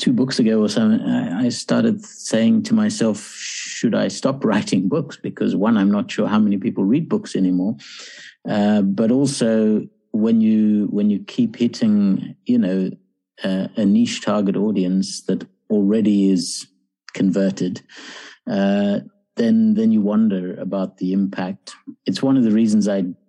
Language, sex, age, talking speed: English, male, 50-69, 155 wpm